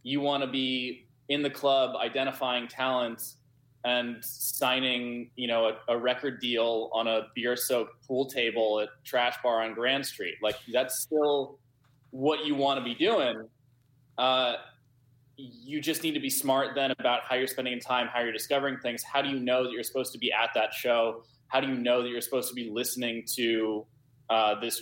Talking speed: 190 wpm